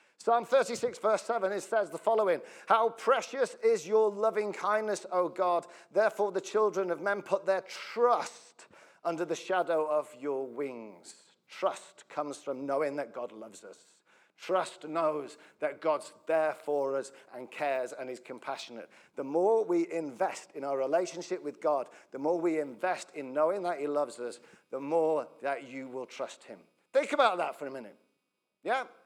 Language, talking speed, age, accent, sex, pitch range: English, 170 wpm, 50-69, British, male, 155-215 Hz